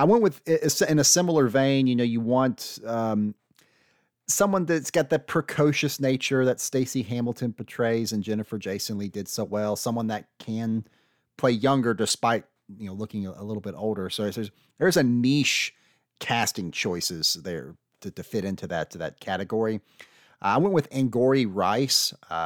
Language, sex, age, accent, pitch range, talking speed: English, male, 30-49, American, 100-130 Hz, 170 wpm